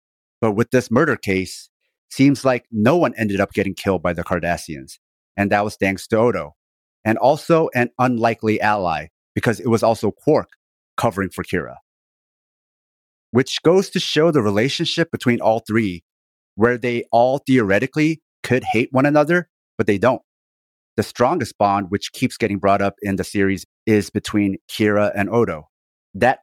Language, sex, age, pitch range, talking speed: English, male, 30-49, 95-120 Hz, 165 wpm